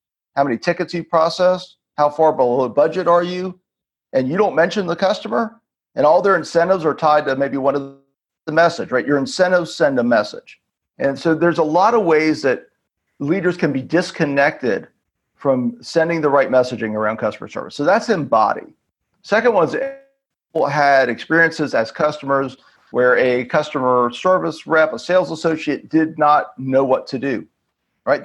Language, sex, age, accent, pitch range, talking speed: English, male, 40-59, American, 135-170 Hz, 170 wpm